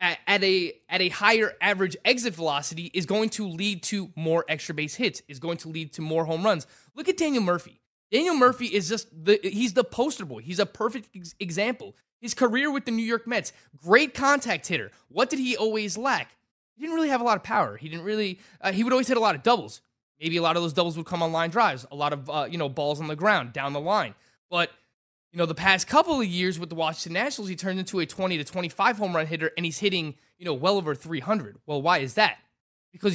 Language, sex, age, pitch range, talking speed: English, male, 20-39, 165-230 Hz, 245 wpm